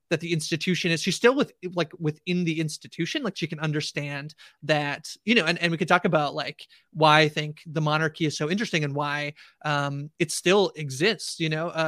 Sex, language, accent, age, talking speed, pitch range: male, English, American, 30-49, 205 wpm, 150-175 Hz